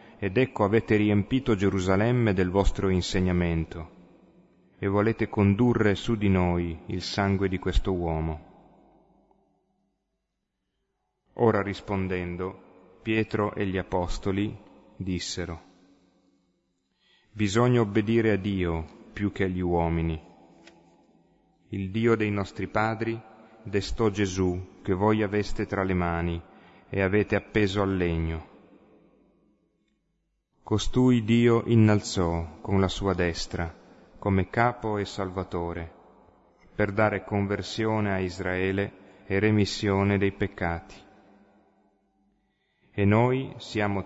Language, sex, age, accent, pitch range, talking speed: Italian, male, 30-49, native, 90-105 Hz, 100 wpm